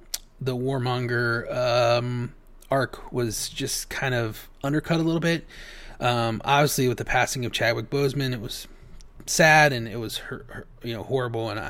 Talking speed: 165 wpm